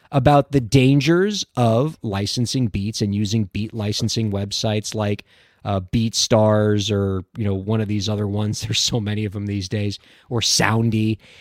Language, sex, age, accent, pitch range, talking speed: English, male, 30-49, American, 110-150 Hz, 165 wpm